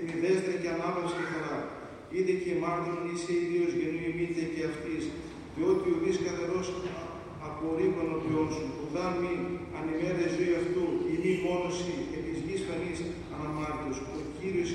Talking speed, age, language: 140 wpm, 40-59, Greek